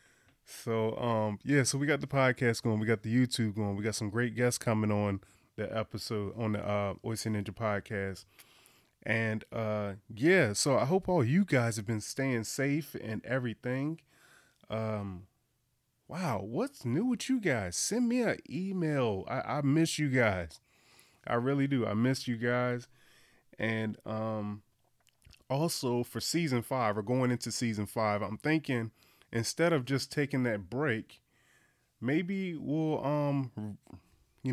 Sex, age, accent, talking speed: male, 20-39, American, 155 wpm